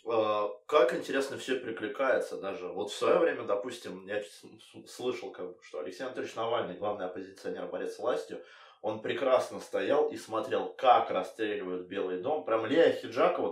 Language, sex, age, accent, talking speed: Russian, male, 20-39, native, 145 wpm